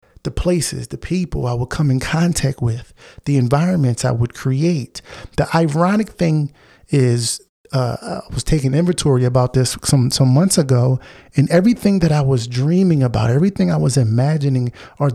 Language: English